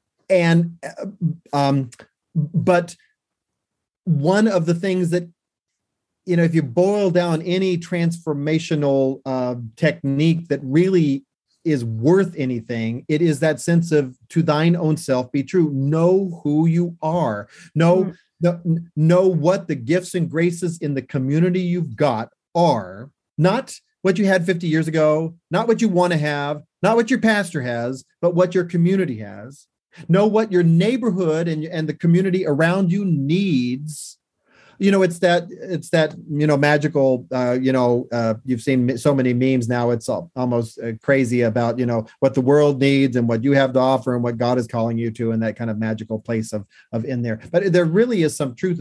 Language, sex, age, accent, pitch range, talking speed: English, male, 40-59, American, 130-180 Hz, 180 wpm